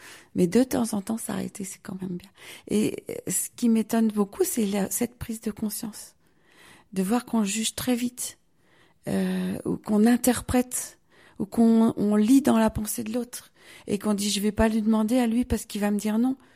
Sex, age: female, 40-59